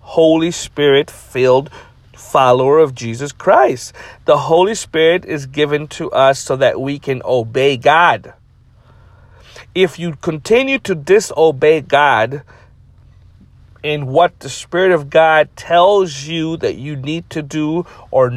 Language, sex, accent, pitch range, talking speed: English, male, American, 120-155 Hz, 130 wpm